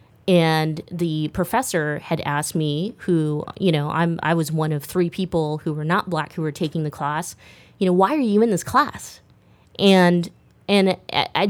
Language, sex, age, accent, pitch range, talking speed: English, female, 20-39, American, 160-200 Hz, 190 wpm